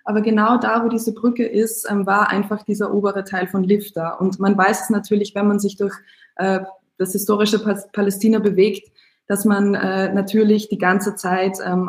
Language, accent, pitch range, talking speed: German, German, 185-205 Hz, 185 wpm